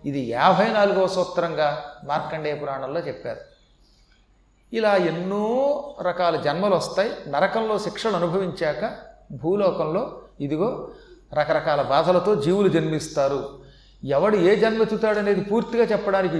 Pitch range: 160-210 Hz